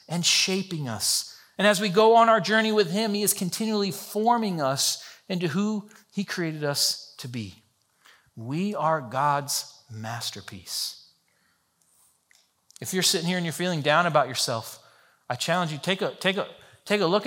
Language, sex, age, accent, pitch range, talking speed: English, male, 40-59, American, 145-200 Hz, 165 wpm